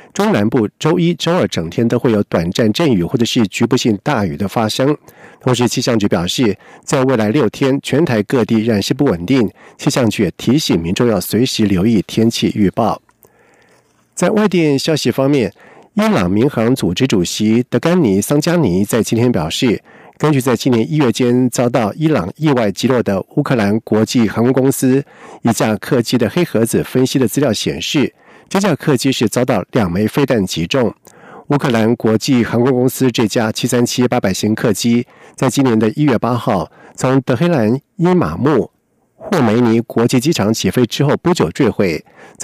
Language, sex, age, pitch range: German, male, 50-69, 115-145 Hz